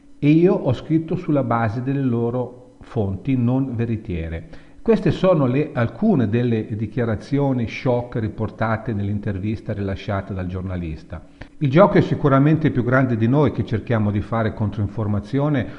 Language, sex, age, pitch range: Italian, male, 50-69, 105-150 Hz